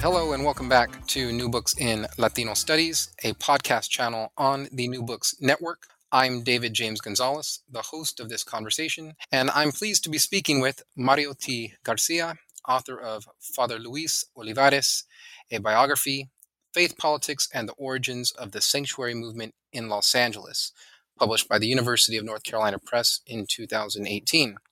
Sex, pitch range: male, 120-145 Hz